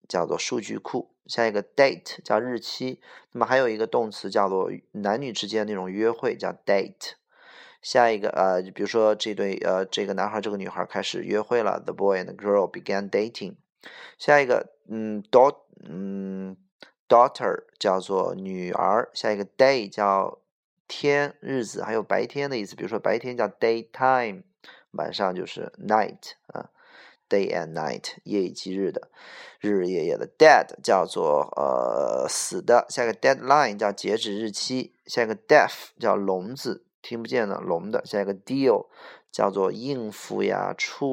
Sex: male